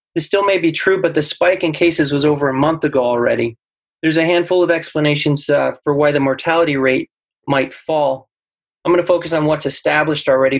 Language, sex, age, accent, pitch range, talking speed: English, male, 30-49, American, 140-170 Hz, 210 wpm